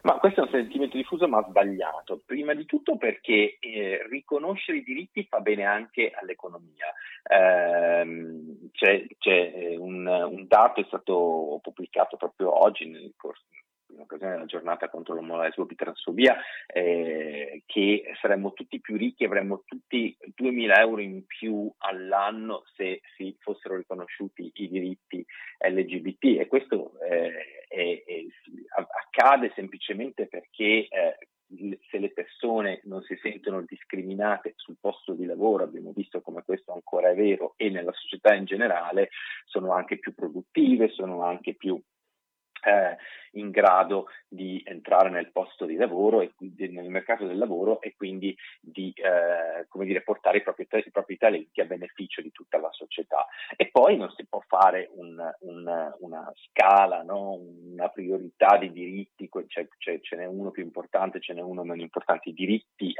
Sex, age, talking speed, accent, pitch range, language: male, 40-59, 155 wpm, native, 90-150 Hz, Italian